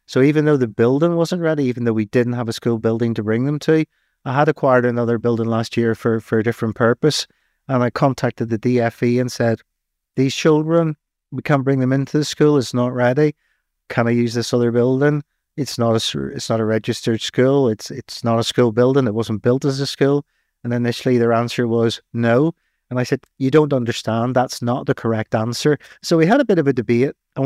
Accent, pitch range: British, 120-140 Hz